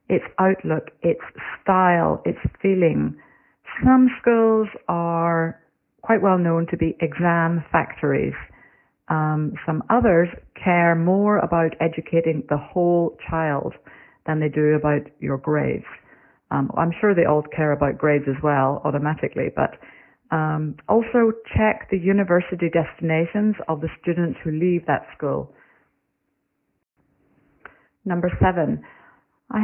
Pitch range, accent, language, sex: 160-195 Hz, British, Chinese, female